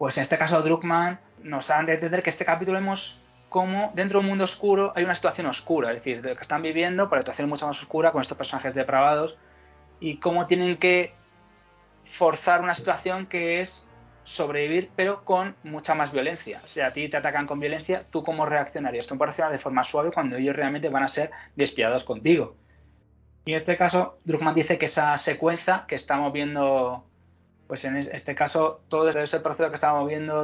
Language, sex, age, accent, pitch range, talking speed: Spanish, male, 20-39, Spanish, 135-175 Hz, 205 wpm